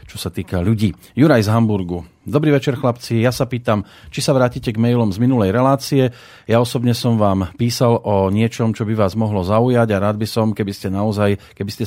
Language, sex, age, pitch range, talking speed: Slovak, male, 40-59, 105-120 Hz, 210 wpm